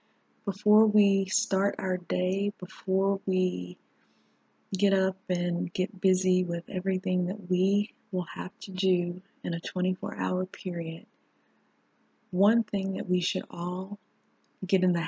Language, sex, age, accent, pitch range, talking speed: English, female, 30-49, American, 180-200 Hz, 130 wpm